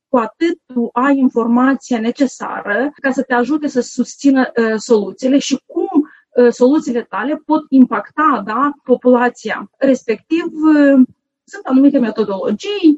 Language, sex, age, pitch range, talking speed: Romanian, female, 30-49, 230-280 Hz, 130 wpm